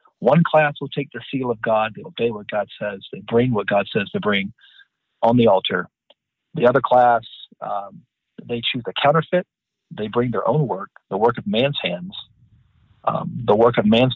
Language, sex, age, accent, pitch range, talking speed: English, male, 40-59, American, 120-155 Hz, 195 wpm